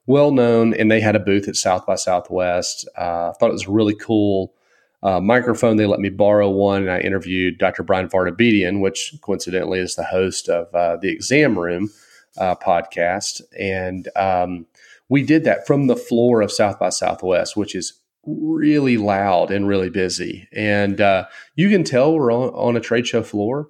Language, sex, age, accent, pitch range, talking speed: English, male, 30-49, American, 100-120 Hz, 185 wpm